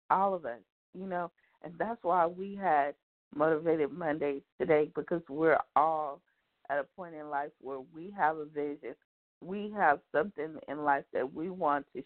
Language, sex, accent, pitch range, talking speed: English, female, American, 145-180 Hz, 175 wpm